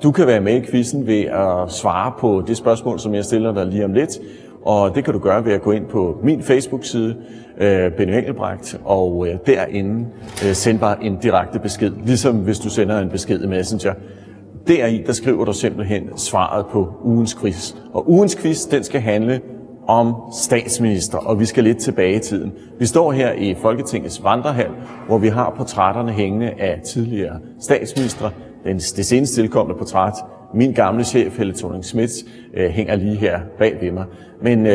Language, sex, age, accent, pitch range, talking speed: Danish, male, 30-49, native, 100-125 Hz, 180 wpm